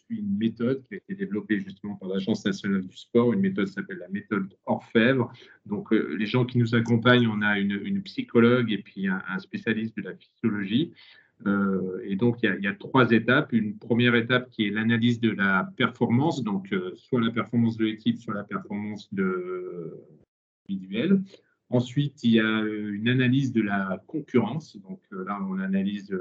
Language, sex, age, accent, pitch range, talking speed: French, male, 40-59, French, 105-140 Hz, 190 wpm